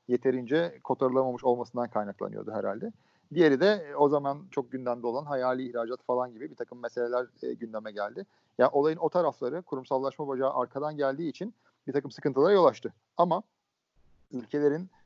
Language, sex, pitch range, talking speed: Turkish, male, 125-145 Hz, 155 wpm